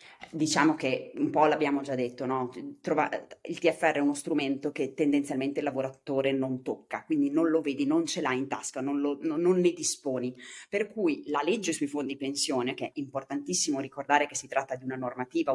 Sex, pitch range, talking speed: female, 130-165 Hz, 185 wpm